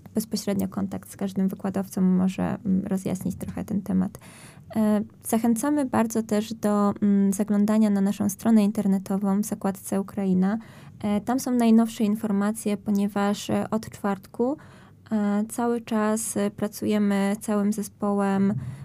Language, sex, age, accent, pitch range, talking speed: Polish, female, 20-39, native, 195-215 Hz, 110 wpm